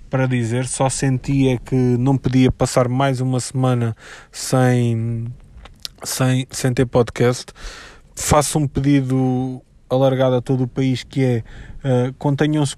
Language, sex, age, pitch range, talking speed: Portuguese, male, 20-39, 125-135 Hz, 130 wpm